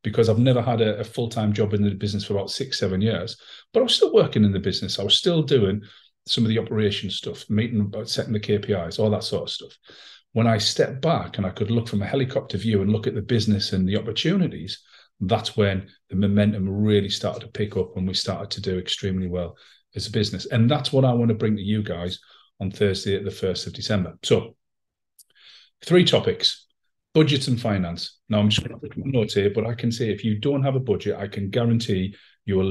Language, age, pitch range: English, 40-59, 100-120 Hz